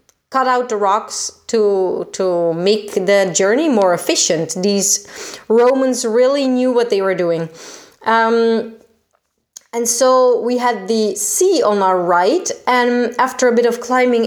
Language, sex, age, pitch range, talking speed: Italian, female, 20-39, 205-260 Hz, 145 wpm